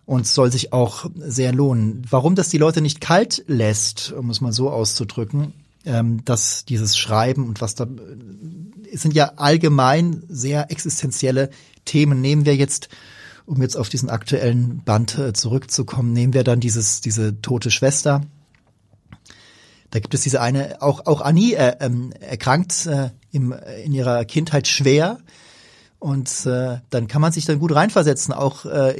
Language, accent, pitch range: German, German, 125-155 Hz